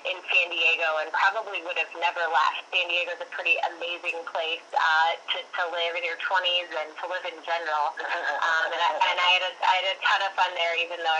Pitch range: 160-180 Hz